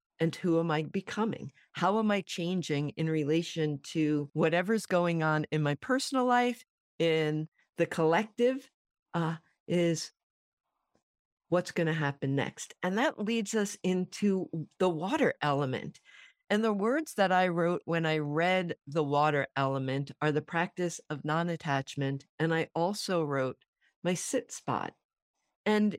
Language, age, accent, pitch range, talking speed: English, 50-69, American, 155-215 Hz, 145 wpm